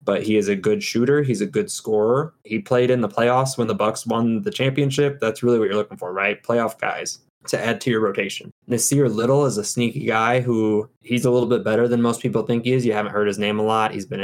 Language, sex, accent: English, male, American